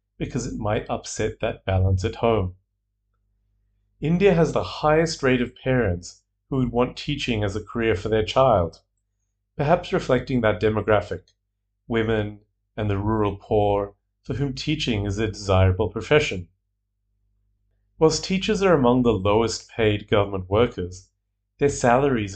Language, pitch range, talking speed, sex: English, 100-125 Hz, 140 wpm, male